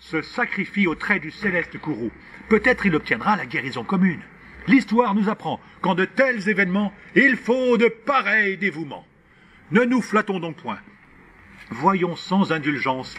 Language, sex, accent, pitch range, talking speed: French, male, French, 165-225 Hz, 150 wpm